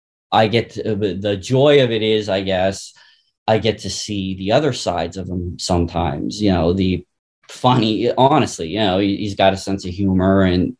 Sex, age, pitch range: male, 20-39, 95-125 Hz